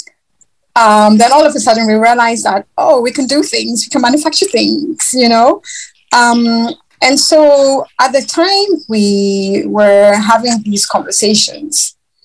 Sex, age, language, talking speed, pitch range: female, 30-49, English, 150 wpm, 200-255 Hz